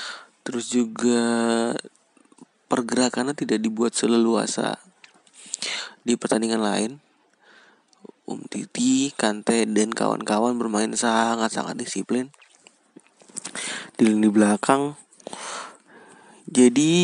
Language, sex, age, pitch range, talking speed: Indonesian, male, 20-39, 115-135 Hz, 80 wpm